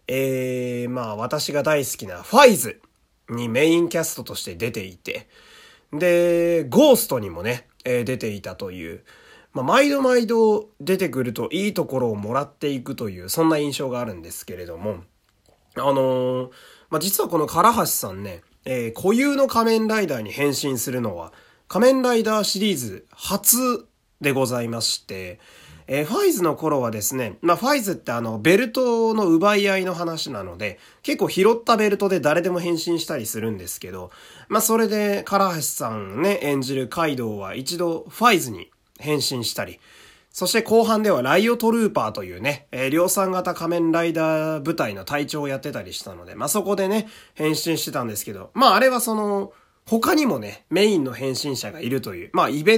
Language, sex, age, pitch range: Japanese, male, 30-49, 125-200 Hz